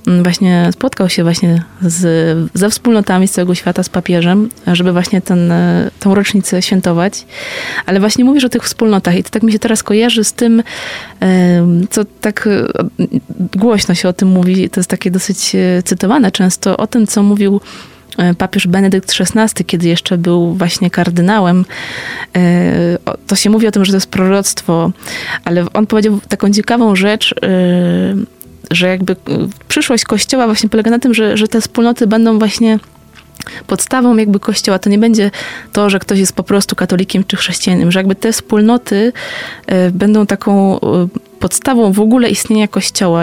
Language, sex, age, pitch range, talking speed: Polish, female, 20-39, 180-215 Hz, 155 wpm